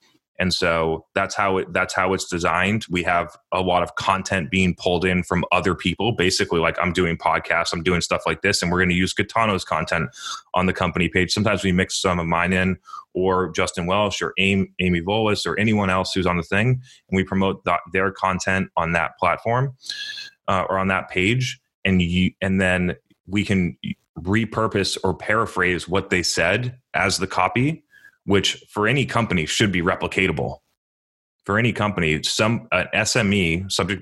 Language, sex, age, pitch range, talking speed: English, male, 20-39, 85-100 Hz, 185 wpm